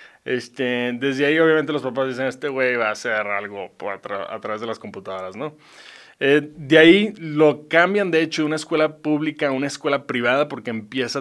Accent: Mexican